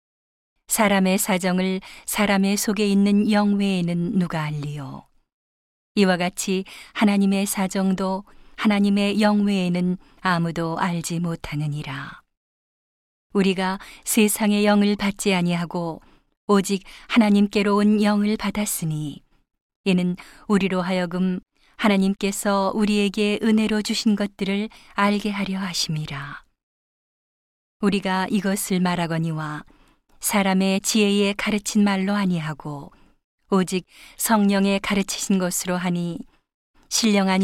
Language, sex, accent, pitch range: Korean, female, native, 180-205 Hz